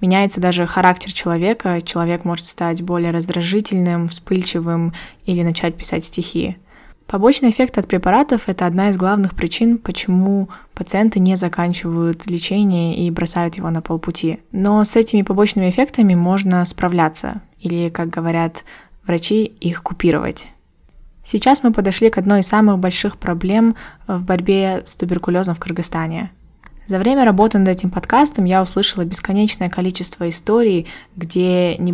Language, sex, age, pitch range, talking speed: Russian, female, 20-39, 170-195 Hz, 140 wpm